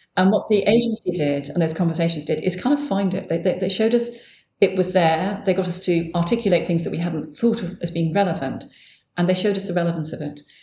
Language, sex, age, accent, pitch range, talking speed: English, female, 40-59, British, 165-195 Hz, 250 wpm